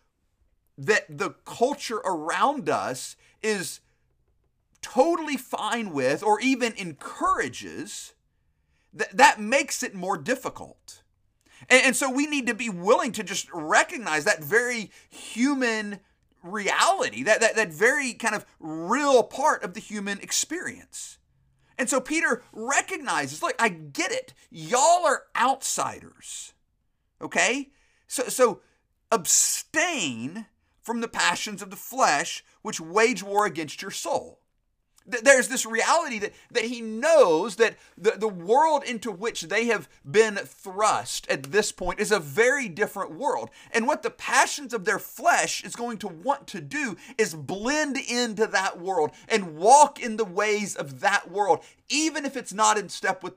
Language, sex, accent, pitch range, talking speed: English, male, American, 200-265 Hz, 145 wpm